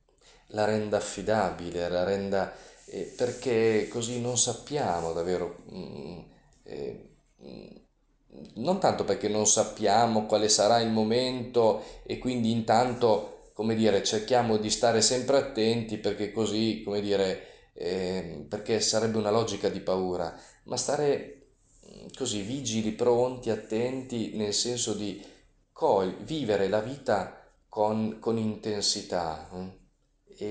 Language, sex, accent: Italian, male, native